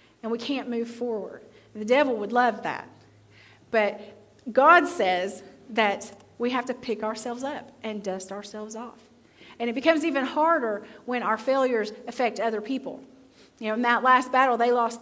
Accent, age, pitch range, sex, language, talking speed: American, 40-59, 220-270 Hz, female, English, 170 wpm